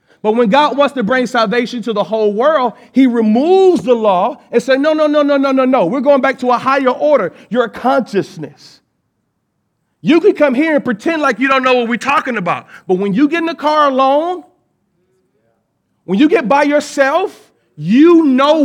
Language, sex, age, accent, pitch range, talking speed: English, male, 40-59, American, 220-290 Hz, 200 wpm